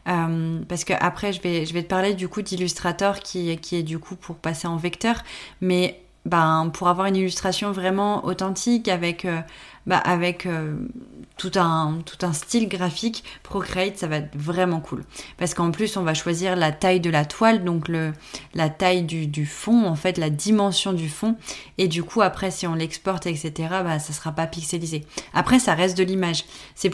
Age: 20-39